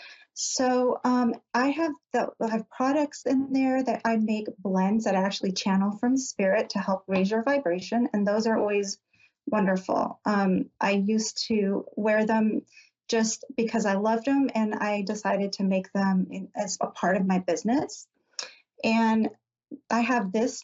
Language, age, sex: English, 40-59, female